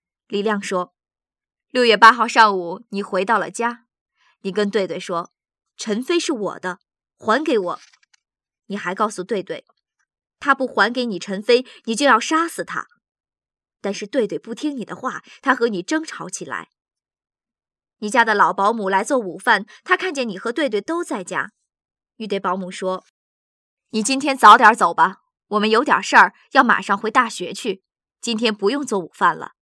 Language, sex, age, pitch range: Vietnamese, male, 20-39, 195-270 Hz